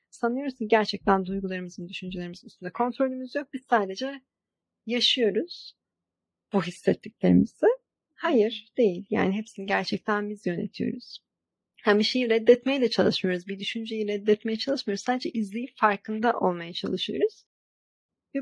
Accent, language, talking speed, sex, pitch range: native, Turkish, 110 wpm, female, 195-250 Hz